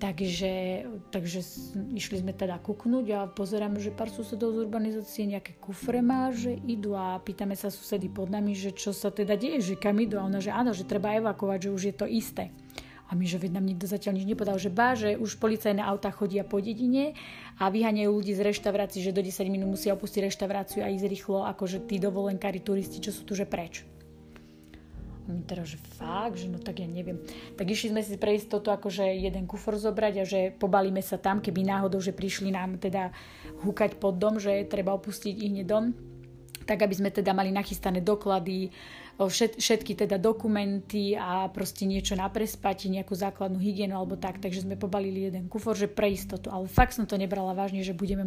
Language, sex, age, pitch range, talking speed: Slovak, female, 30-49, 190-210 Hz, 200 wpm